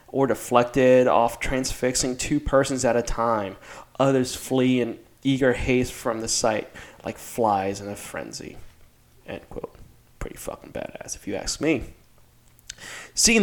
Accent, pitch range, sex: American, 115-135 Hz, male